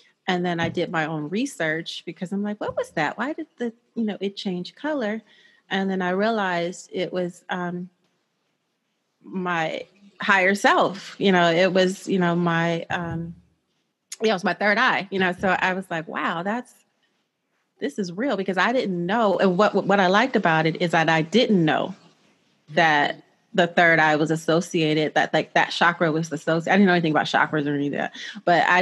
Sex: female